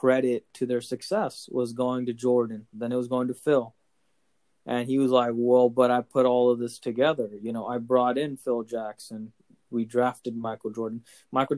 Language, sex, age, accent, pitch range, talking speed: English, male, 20-39, American, 115-130 Hz, 195 wpm